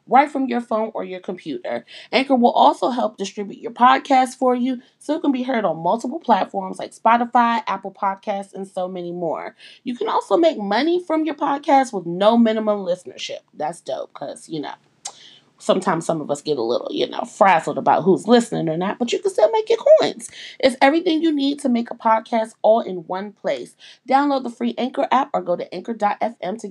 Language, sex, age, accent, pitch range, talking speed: English, female, 30-49, American, 195-255 Hz, 210 wpm